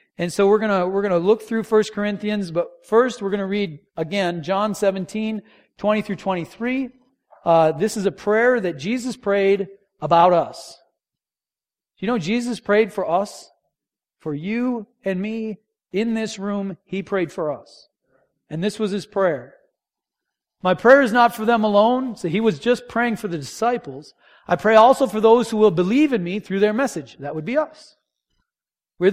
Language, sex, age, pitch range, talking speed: English, male, 40-59, 185-235 Hz, 175 wpm